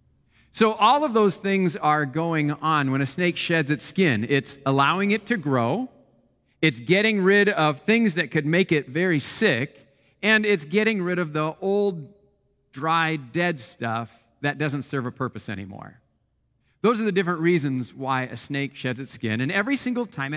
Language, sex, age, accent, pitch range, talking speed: English, male, 40-59, American, 115-170 Hz, 180 wpm